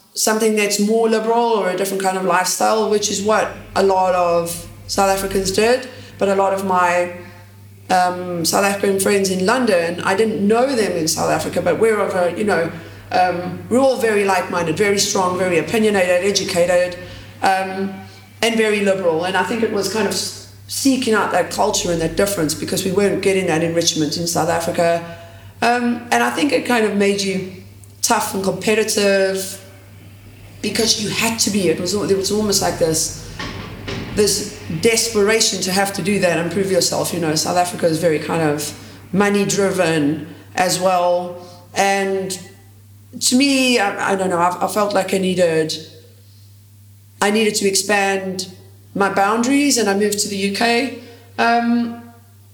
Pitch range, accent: 160-210 Hz, British